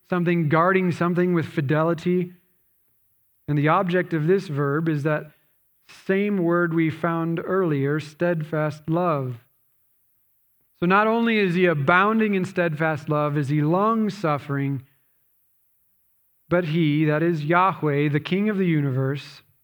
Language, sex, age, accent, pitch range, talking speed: English, male, 40-59, American, 145-180 Hz, 130 wpm